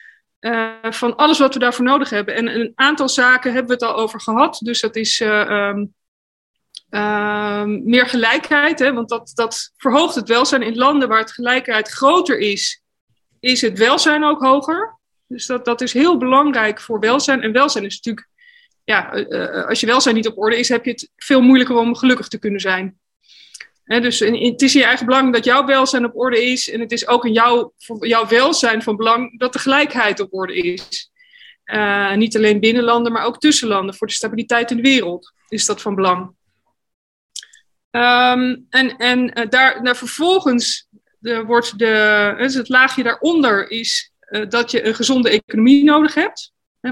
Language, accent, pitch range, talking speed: Dutch, Dutch, 225-265 Hz, 185 wpm